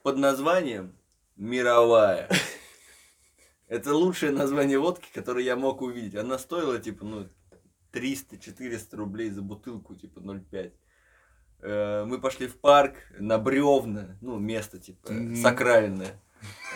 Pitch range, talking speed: 105-145 Hz, 105 wpm